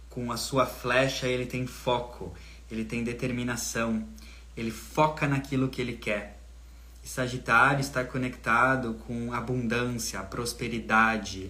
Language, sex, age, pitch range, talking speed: Portuguese, male, 20-39, 105-130 Hz, 120 wpm